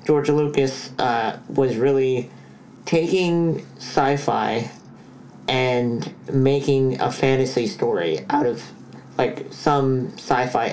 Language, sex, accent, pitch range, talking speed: English, male, American, 120-145 Hz, 95 wpm